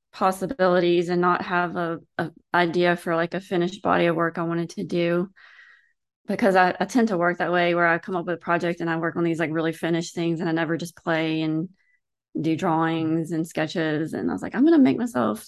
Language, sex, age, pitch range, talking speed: English, female, 20-39, 170-195 Hz, 235 wpm